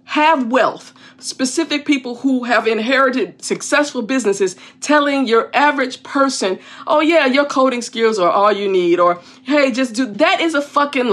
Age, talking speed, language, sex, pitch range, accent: 50-69, 160 wpm, English, female, 210-275 Hz, American